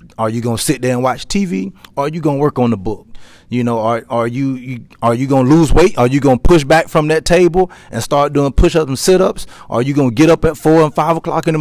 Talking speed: 305 wpm